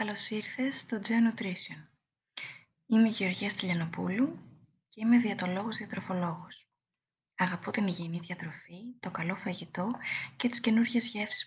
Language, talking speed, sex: Greek, 120 wpm, female